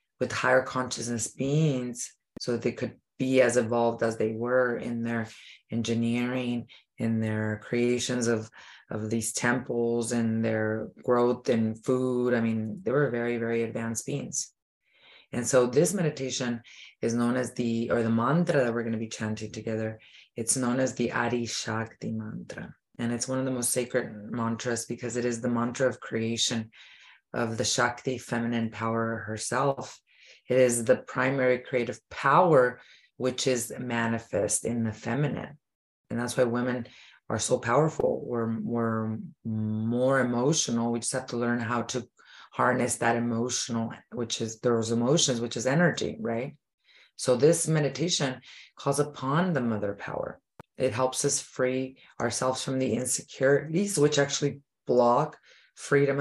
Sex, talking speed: female, 155 wpm